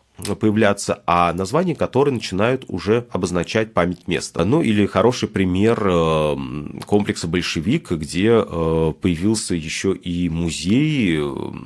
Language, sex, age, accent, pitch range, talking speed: Russian, male, 30-49, native, 85-110 Hz, 105 wpm